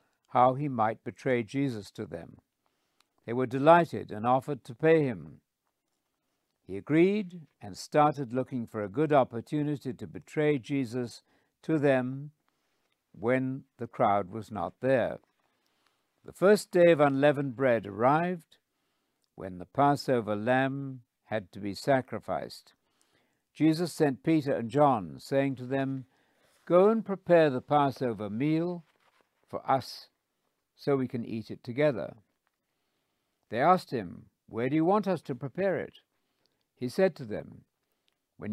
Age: 60-79